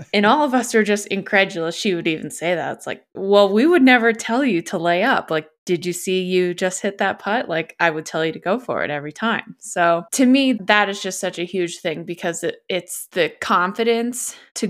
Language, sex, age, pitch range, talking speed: English, female, 20-39, 175-215 Hz, 235 wpm